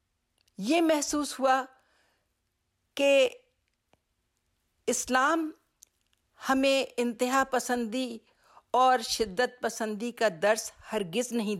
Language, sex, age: Urdu, female, 50-69